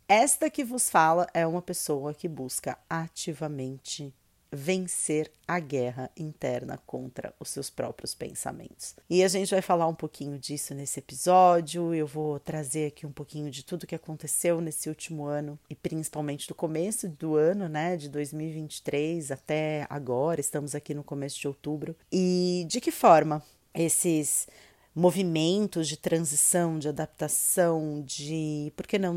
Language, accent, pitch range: Portuguese, Brazilian, 150-175 Hz